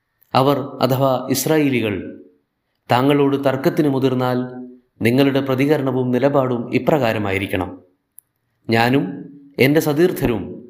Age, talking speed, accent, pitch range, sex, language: 30-49, 75 wpm, native, 120-150 Hz, male, Malayalam